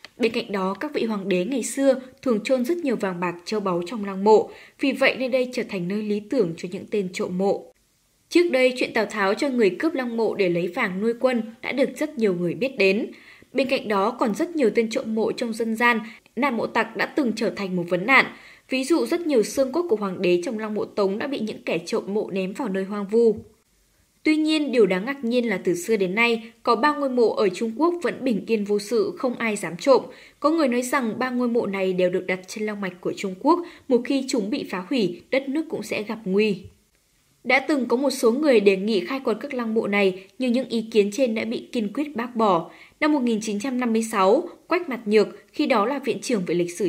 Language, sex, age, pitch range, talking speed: Vietnamese, female, 10-29, 205-265 Hz, 250 wpm